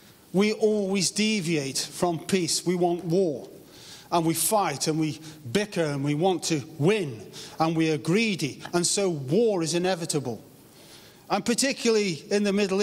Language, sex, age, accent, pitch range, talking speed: English, male, 40-59, British, 155-210 Hz, 155 wpm